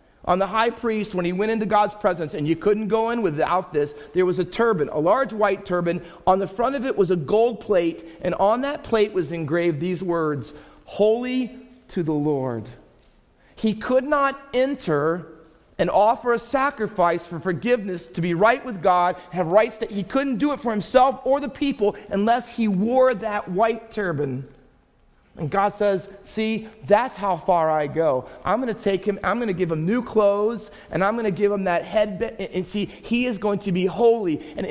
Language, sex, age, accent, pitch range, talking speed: English, male, 40-59, American, 180-235 Hz, 200 wpm